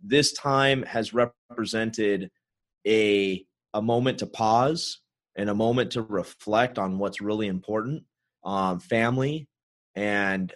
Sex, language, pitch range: male, English, 95-120 Hz